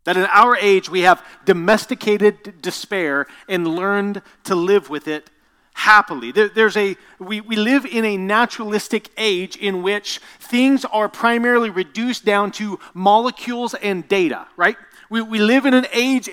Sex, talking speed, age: male, 160 wpm, 40-59